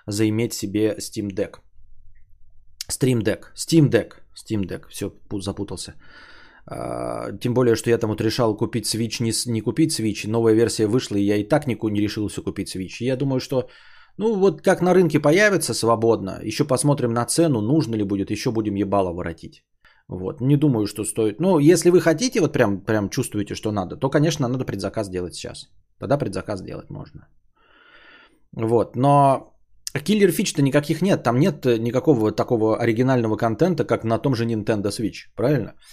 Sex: male